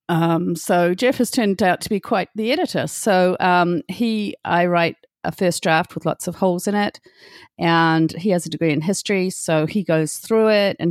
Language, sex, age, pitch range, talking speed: English, female, 40-59, 160-195 Hz, 210 wpm